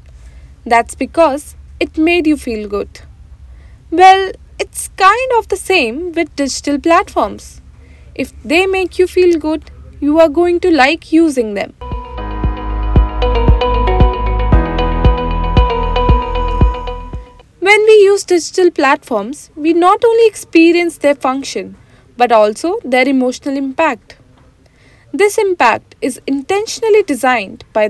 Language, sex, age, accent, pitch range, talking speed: English, female, 20-39, Indian, 240-355 Hz, 110 wpm